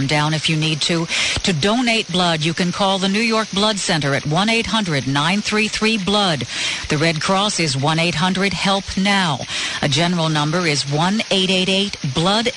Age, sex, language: 50-69, female, English